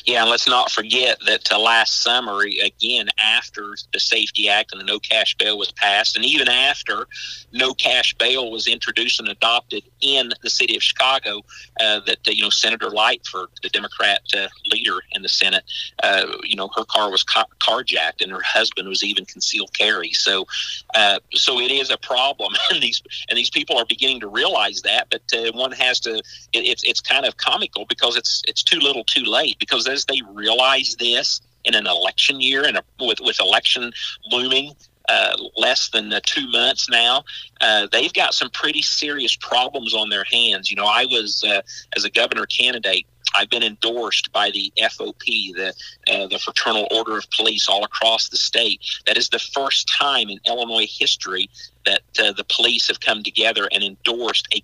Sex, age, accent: male, 40-59, American